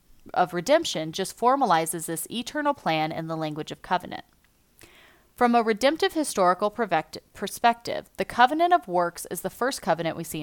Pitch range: 165-230 Hz